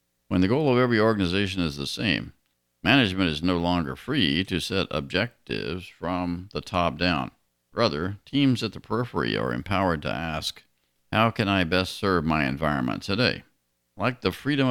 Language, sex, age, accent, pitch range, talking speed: English, male, 50-69, American, 70-100 Hz, 165 wpm